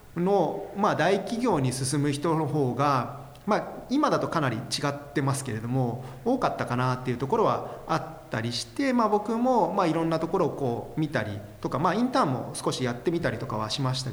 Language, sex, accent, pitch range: Japanese, male, native, 125-180 Hz